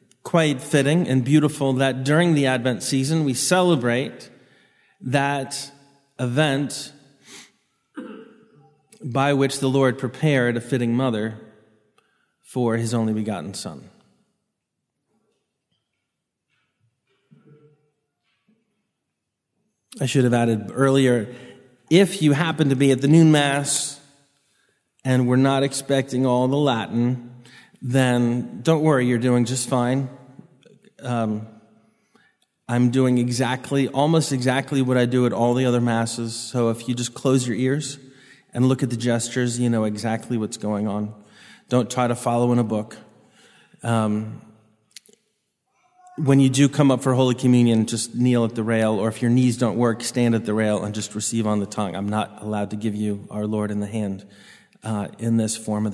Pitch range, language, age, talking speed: 115-140 Hz, English, 30-49, 150 wpm